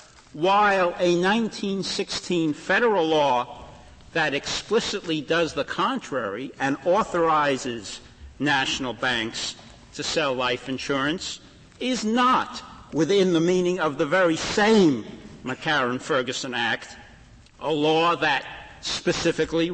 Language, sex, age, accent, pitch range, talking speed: English, male, 60-79, American, 140-180 Hz, 100 wpm